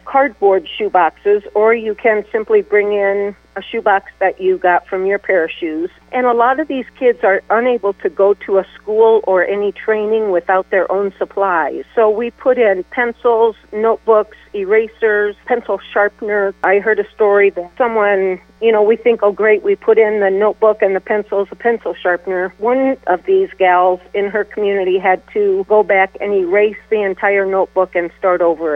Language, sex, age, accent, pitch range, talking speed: English, female, 50-69, American, 190-220 Hz, 190 wpm